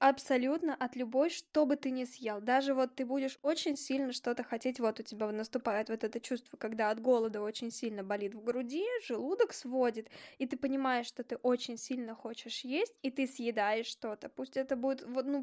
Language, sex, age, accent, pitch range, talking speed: Russian, female, 10-29, native, 230-275 Hz, 195 wpm